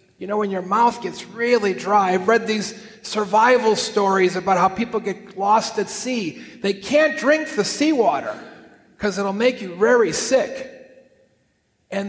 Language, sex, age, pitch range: English, male, 40-59, 190-240 Hz